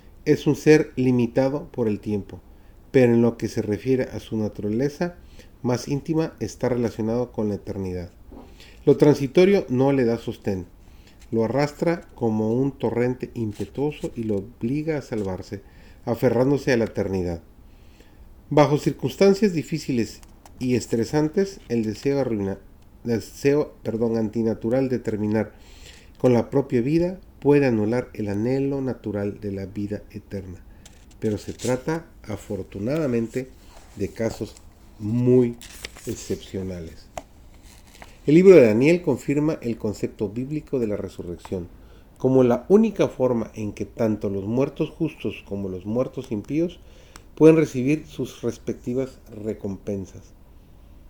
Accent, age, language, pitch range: Mexican, 40-59, Spanish, 100-135 Hz